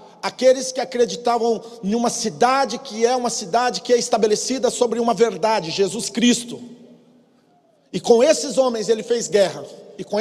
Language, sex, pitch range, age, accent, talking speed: Portuguese, male, 160-215 Hz, 40-59, Brazilian, 160 wpm